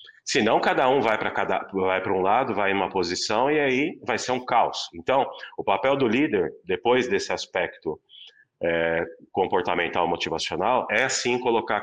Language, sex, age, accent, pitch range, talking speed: Portuguese, male, 30-49, Brazilian, 105-140 Hz, 170 wpm